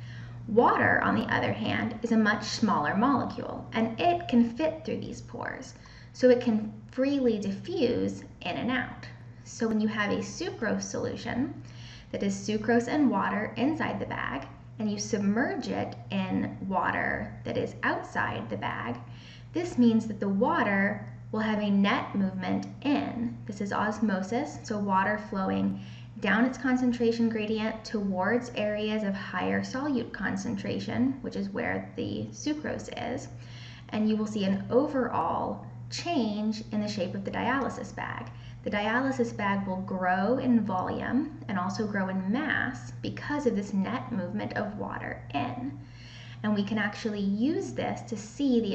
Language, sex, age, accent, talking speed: English, female, 10-29, American, 155 wpm